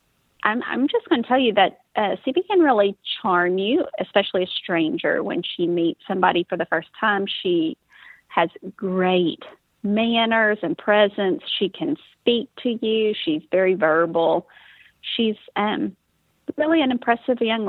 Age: 30-49